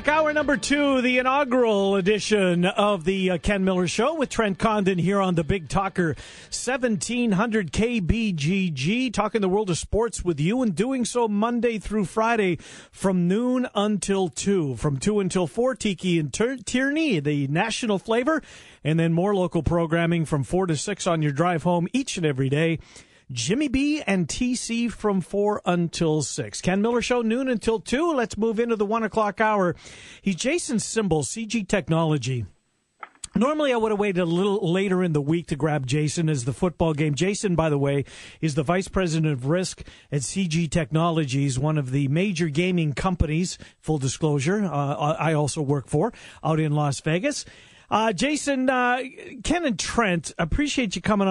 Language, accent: English, American